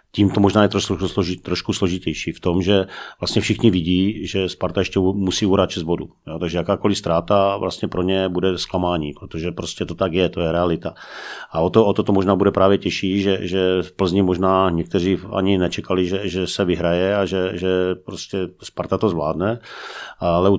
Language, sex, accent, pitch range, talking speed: Czech, male, native, 90-95 Hz, 200 wpm